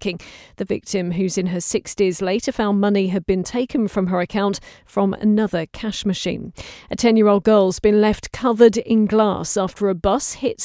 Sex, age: female, 40-59